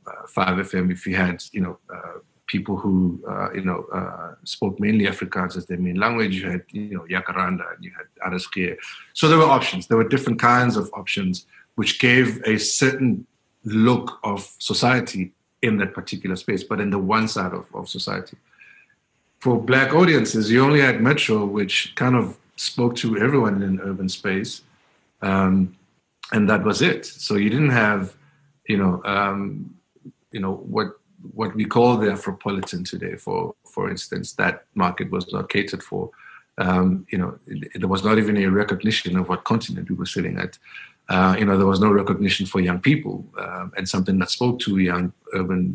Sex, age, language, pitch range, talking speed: male, 50-69, English, 95-115 Hz, 180 wpm